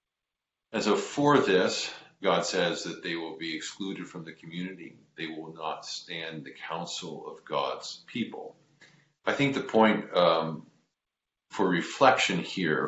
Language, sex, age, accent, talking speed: English, male, 40-59, American, 145 wpm